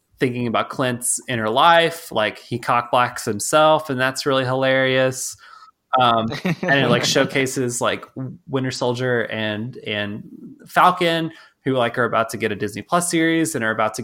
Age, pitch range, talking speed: 20-39, 110-140 Hz, 160 wpm